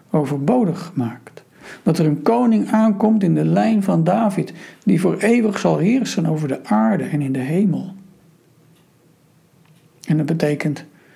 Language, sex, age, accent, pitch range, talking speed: Dutch, male, 60-79, Dutch, 160-205 Hz, 145 wpm